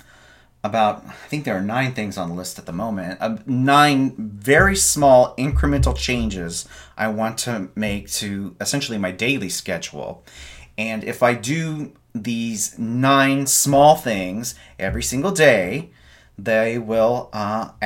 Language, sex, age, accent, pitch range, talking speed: English, male, 30-49, American, 95-125 Hz, 140 wpm